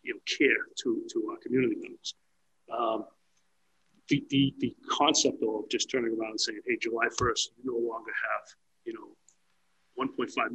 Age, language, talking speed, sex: 40-59, English, 165 wpm, male